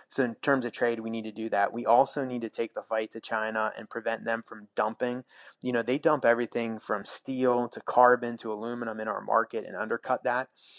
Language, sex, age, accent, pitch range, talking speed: English, male, 20-39, American, 110-120 Hz, 230 wpm